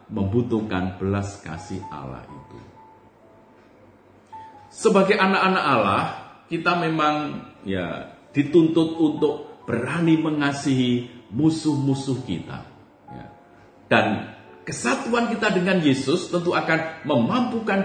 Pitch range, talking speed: 105-170 Hz, 85 wpm